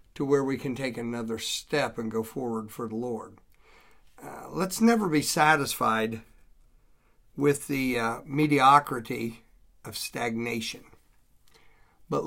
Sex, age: male, 50-69